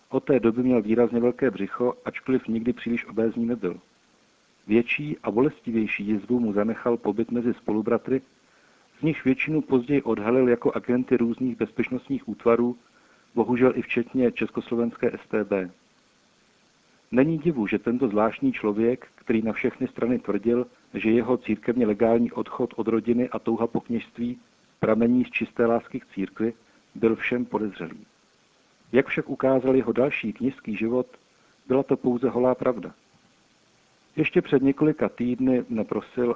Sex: male